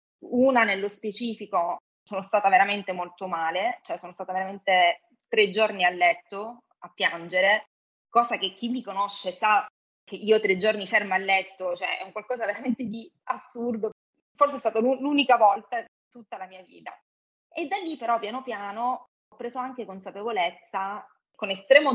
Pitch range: 180-240 Hz